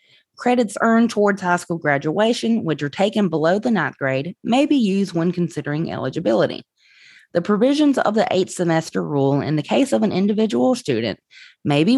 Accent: American